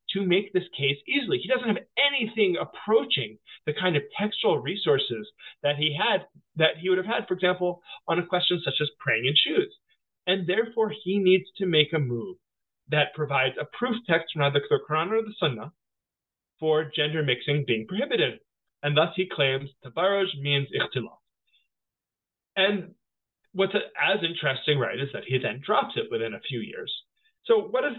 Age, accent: 30-49, American